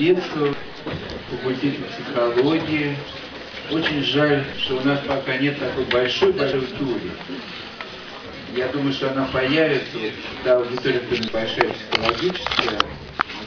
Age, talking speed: 50-69, 105 wpm